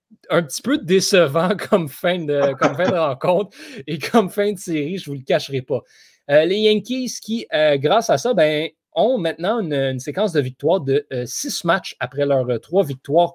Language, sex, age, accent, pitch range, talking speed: French, male, 30-49, Canadian, 150-220 Hz, 200 wpm